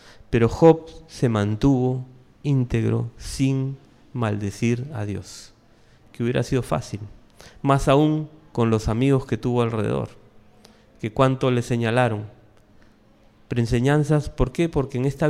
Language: Spanish